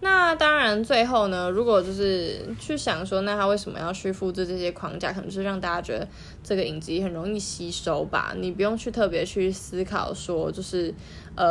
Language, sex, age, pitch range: Chinese, female, 20-39, 180-220 Hz